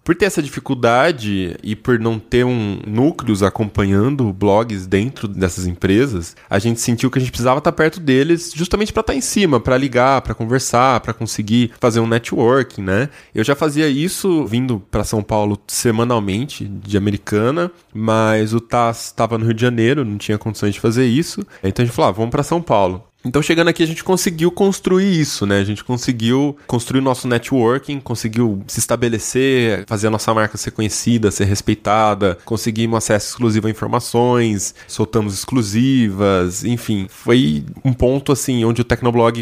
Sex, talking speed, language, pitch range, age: male, 175 wpm, Portuguese, 105-130 Hz, 20-39